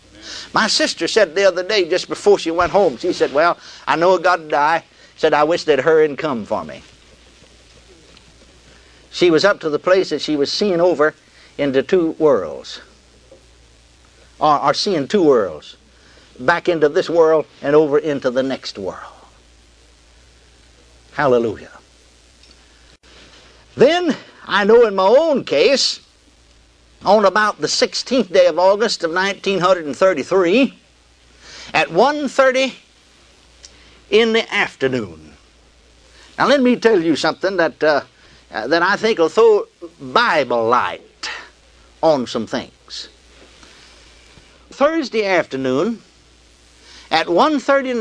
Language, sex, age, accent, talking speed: English, male, 60-79, American, 135 wpm